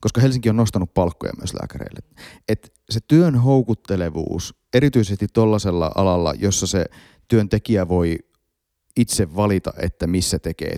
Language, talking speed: Finnish, 130 wpm